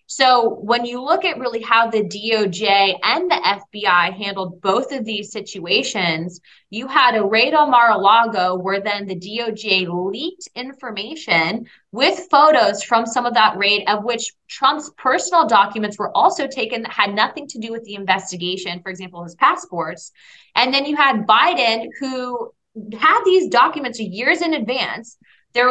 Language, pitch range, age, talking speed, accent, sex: English, 195-250 Hz, 20-39, 160 wpm, American, female